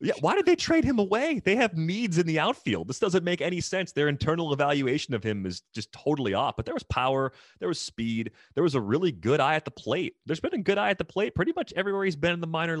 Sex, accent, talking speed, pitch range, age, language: male, American, 275 wpm, 90-135 Hz, 30-49, English